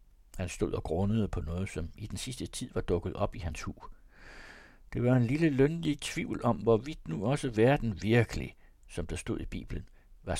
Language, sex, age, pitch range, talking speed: Danish, male, 60-79, 90-120 Hz, 200 wpm